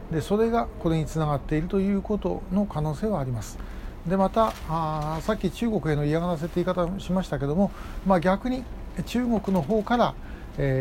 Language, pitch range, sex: Japanese, 150-200 Hz, male